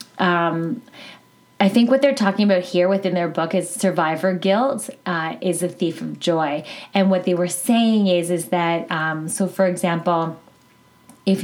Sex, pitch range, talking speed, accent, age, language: female, 170-195 Hz, 175 wpm, American, 20-39, English